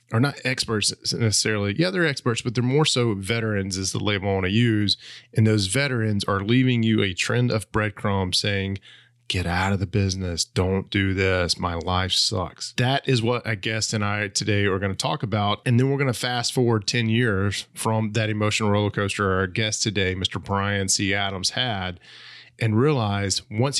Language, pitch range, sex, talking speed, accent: English, 100-125 Hz, male, 200 wpm, American